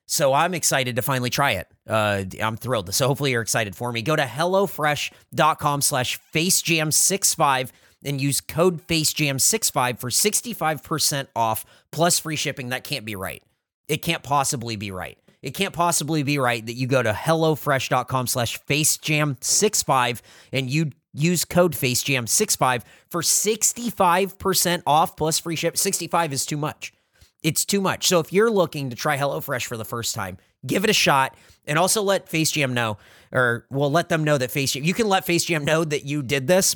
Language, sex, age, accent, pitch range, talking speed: English, male, 30-49, American, 120-165 Hz, 175 wpm